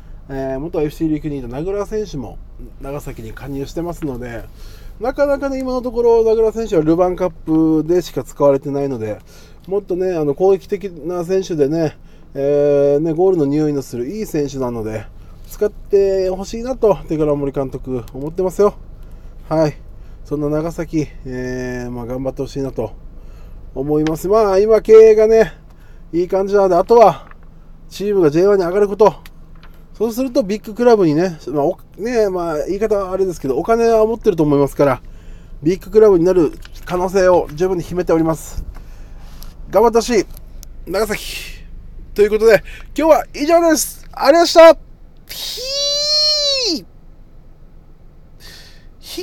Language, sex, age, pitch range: Japanese, male, 20-39, 135-210 Hz